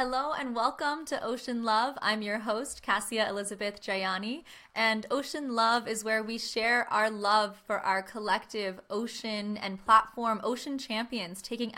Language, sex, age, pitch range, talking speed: English, female, 20-39, 200-235 Hz, 155 wpm